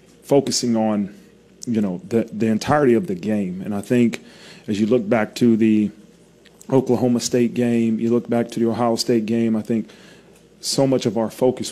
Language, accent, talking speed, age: English, American, 190 wpm, 30-49